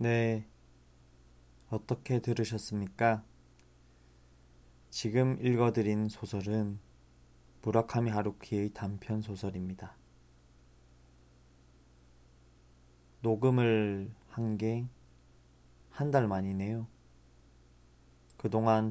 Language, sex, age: Korean, male, 20-39